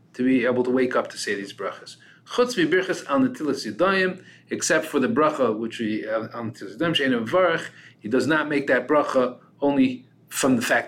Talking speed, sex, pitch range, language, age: 165 wpm, male, 115-170 Hz, English, 30-49